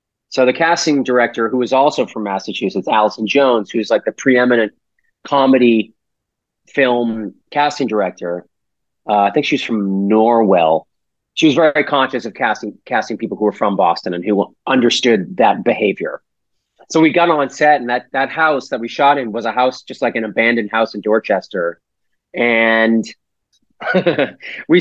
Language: English